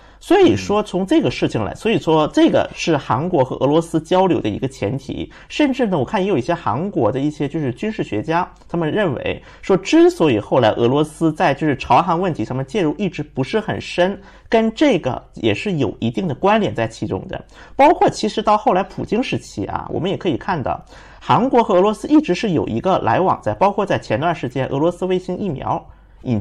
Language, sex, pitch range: Chinese, male, 130-195 Hz